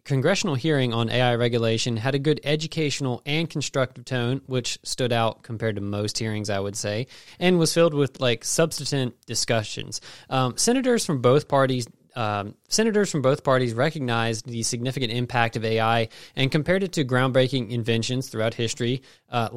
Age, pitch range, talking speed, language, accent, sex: 20-39, 110-135 Hz, 165 wpm, English, American, male